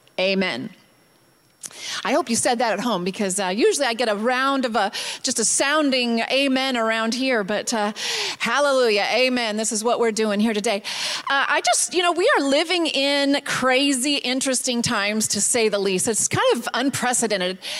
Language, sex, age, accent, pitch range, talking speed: English, female, 30-49, American, 220-280 Hz, 180 wpm